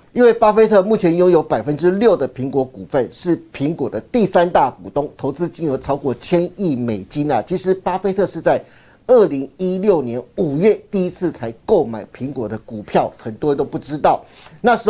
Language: Chinese